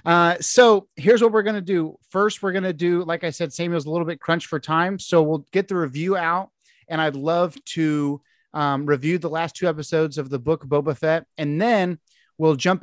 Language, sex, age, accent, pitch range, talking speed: English, male, 30-49, American, 140-170 Hz, 225 wpm